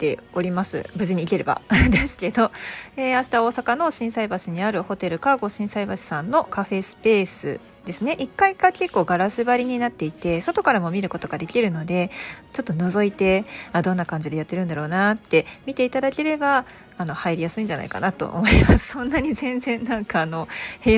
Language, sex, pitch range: Japanese, female, 175-245 Hz